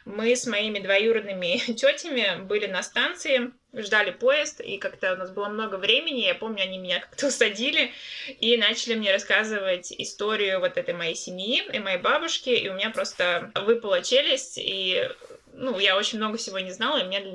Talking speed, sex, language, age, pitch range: 175 wpm, female, Russian, 20-39, 195-265 Hz